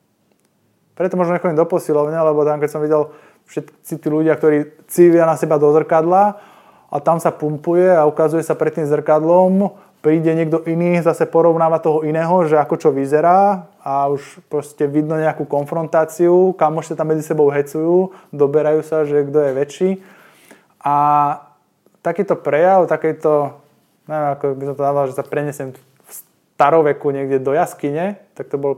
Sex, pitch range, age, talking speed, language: male, 140-170 Hz, 20-39, 165 wpm, Slovak